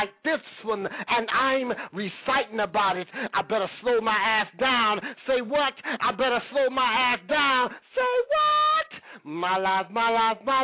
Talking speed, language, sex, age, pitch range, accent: 165 wpm, English, male, 30-49, 230-275 Hz, American